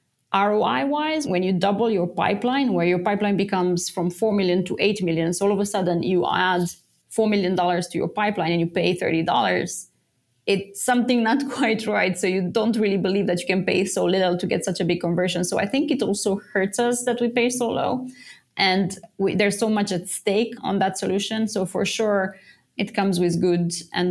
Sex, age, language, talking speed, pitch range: female, 20-39, English, 210 wpm, 180-215 Hz